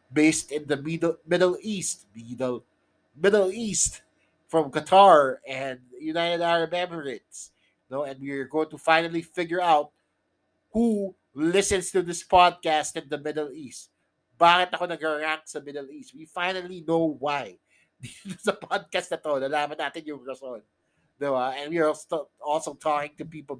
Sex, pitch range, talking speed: male, 145-180 Hz, 140 wpm